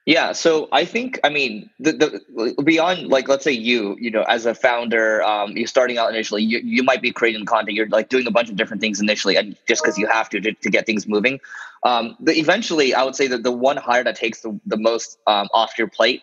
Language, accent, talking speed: English, American, 250 wpm